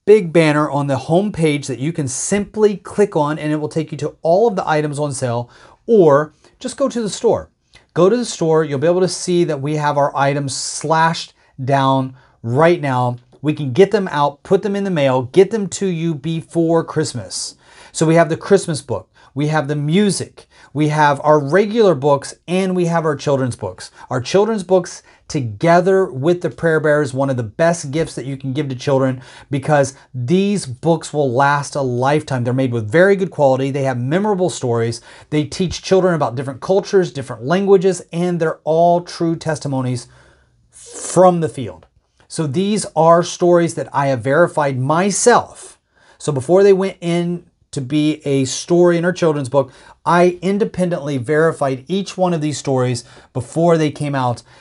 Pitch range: 135-180 Hz